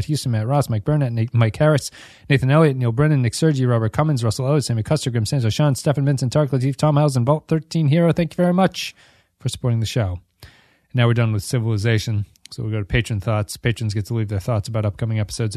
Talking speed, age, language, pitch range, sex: 240 wpm, 30-49, English, 110-135 Hz, male